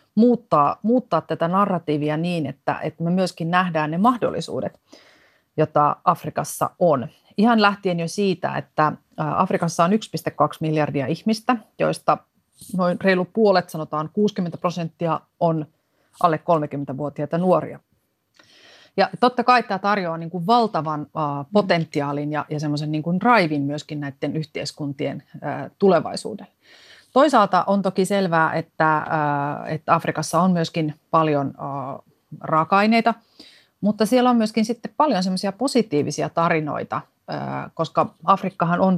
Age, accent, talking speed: 30-49, native, 115 wpm